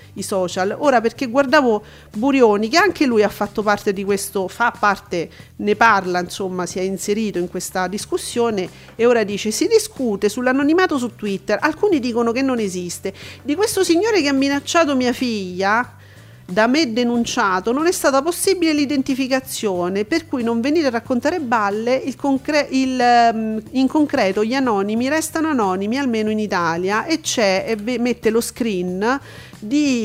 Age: 40-59